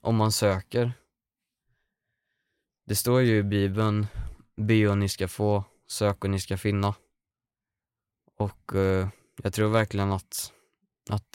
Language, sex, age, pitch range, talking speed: Swedish, male, 20-39, 100-105 Hz, 130 wpm